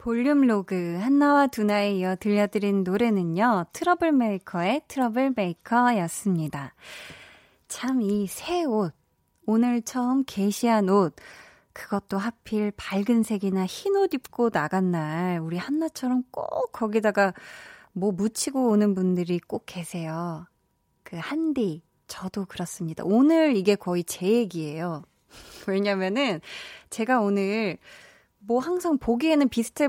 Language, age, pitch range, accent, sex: Korean, 20-39, 190-260 Hz, native, female